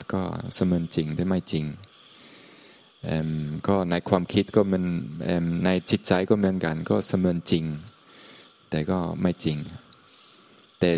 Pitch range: 80-95 Hz